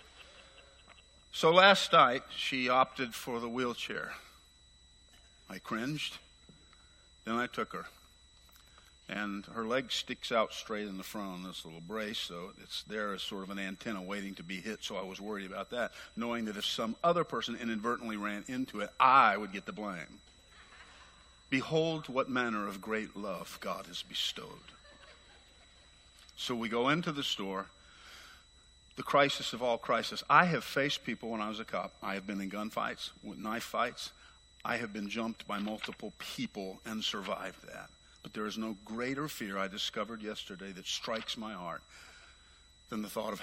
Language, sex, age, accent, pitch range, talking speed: English, male, 50-69, American, 95-115 Hz, 170 wpm